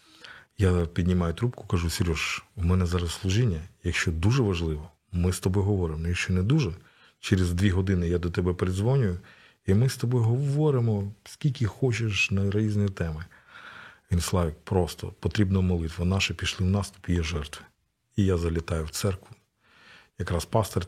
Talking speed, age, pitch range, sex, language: 160 wpm, 40-59, 85-105 Hz, male, Ukrainian